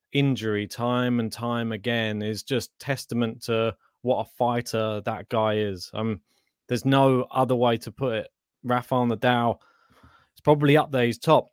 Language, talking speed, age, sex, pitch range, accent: English, 160 wpm, 20-39, male, 115-145 Hz, British